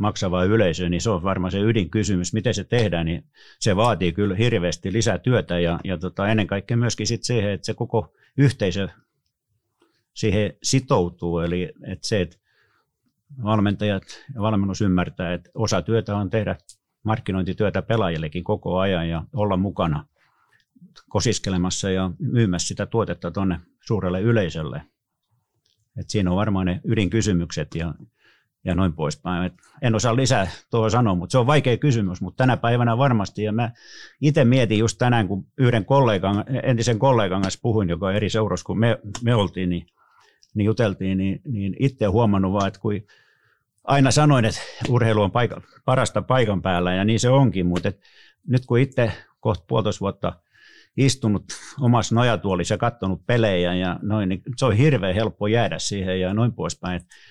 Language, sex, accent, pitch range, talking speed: English, male, Finnish, 95-115 Hz, 160 wpm